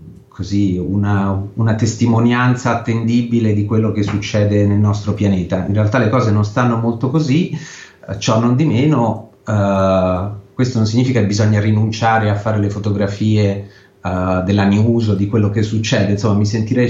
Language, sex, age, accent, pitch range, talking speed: Italian, male, 30-49, native, 100-115 Hz, 165 wpm